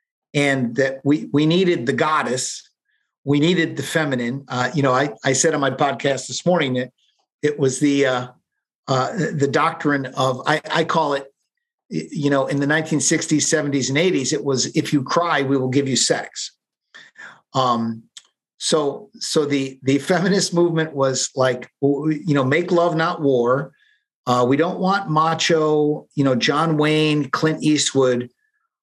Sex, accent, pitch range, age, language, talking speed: male, American, 135-170 Hz, 50-69, English, 165 wpm